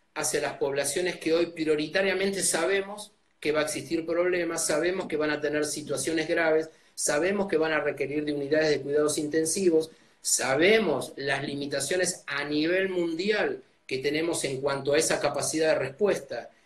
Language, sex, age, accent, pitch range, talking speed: Spanish, male, 30-49, Argentinian, 145-180 Hz, 160 wpm